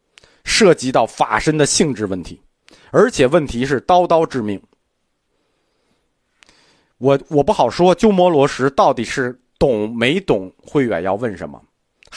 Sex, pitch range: male, 140-220 Hz